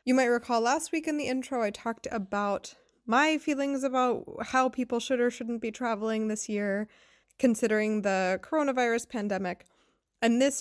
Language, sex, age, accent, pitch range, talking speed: English, female, 20-39, American, 210-260 Hz, 165 wpm